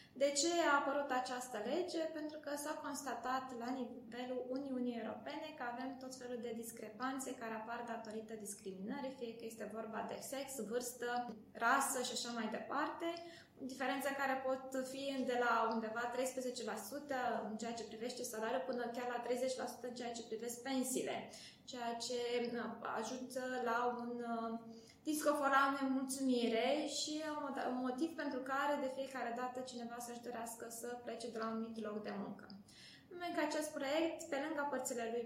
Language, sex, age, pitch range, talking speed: Romanian, female, 20-39, 235-280 Hz, 160 wpm